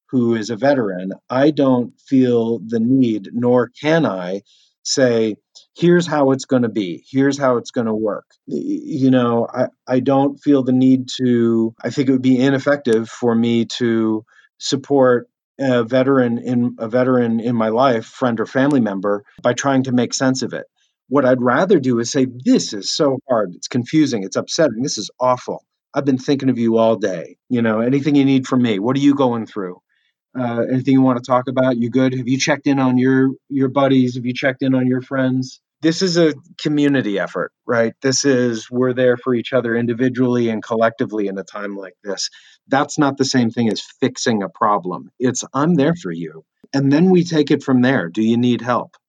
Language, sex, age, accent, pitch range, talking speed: English, male, 40-59, American, 115-135 Hz, 205 wpm